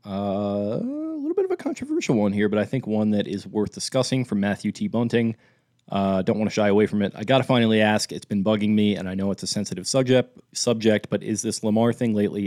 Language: English